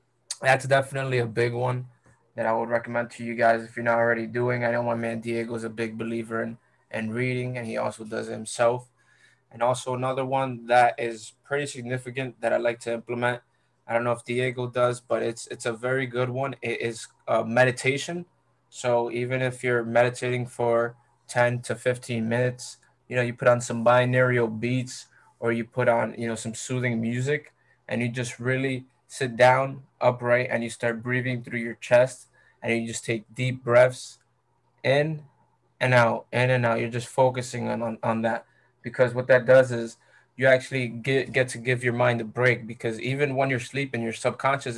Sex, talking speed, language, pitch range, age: male, 195 wpm, English, 115-130 Hz, 20-39